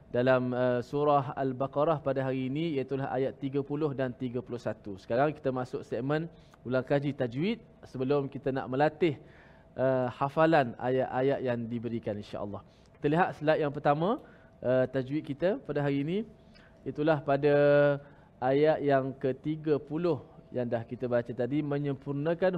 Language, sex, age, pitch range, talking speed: Malayalam, male, 20-39, 130-160 Hz, 130 wpm